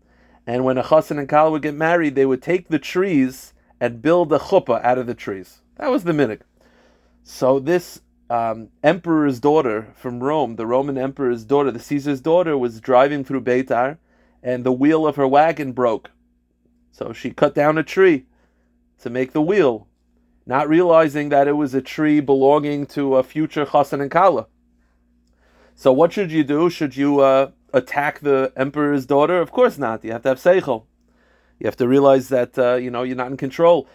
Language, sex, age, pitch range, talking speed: English, male, 30-49, 120-155 Hz, 190 wpm